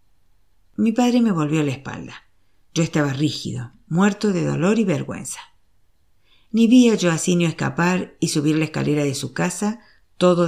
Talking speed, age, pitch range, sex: 155 wpm, 50-69, 115-180 Hz, female